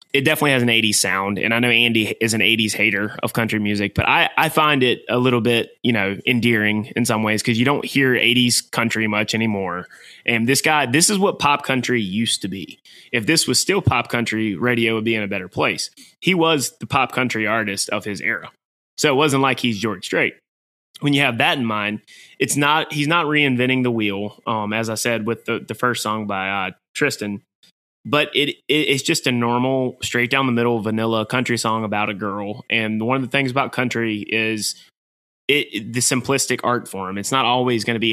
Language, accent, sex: English, American, male